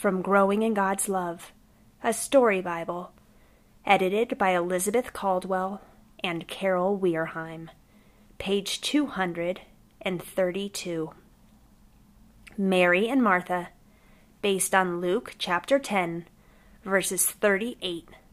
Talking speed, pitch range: 90 wpm, 180-220 Hz